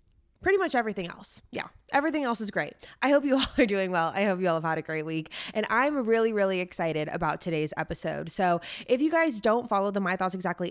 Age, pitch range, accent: 20-39, 175-220 Hz, American